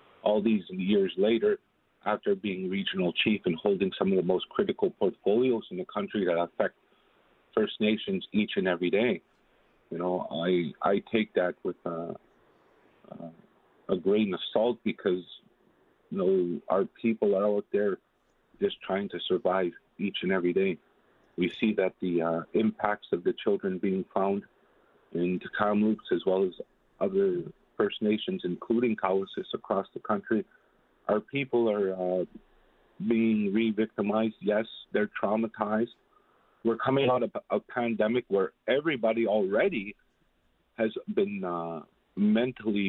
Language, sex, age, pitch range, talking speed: English, male, 50-69, 95-125 Hz, 145 wpm